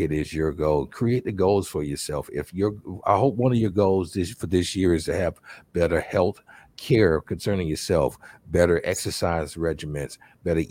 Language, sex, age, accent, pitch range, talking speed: English, male, 50-69, American, 90-115 Hz, 185 wpm